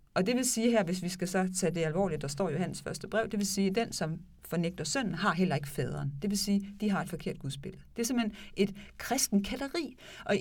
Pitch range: 155-210 Hz